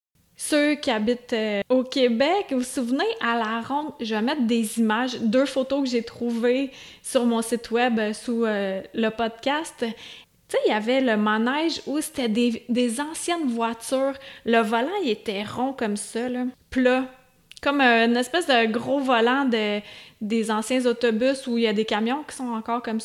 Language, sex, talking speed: French, female, 190 wpm